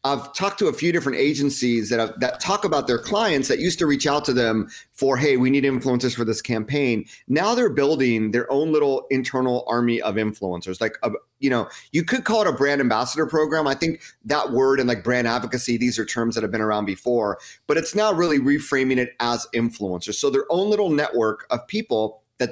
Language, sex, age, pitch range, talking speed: English, male, 30-49, 115-145 Hz, 220 wpm